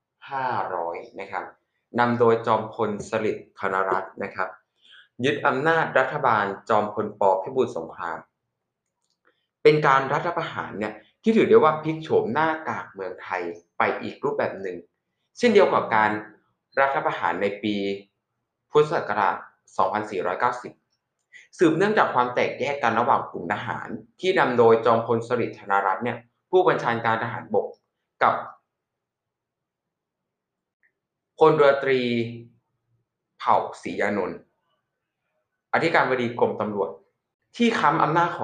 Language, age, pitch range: Thai, 20-39, 115-185 Hz